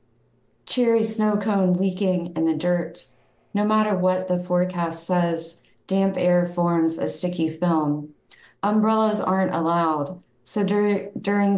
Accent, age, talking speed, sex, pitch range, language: American, 40-59, 125 wpm, female, 160-185 Hz, English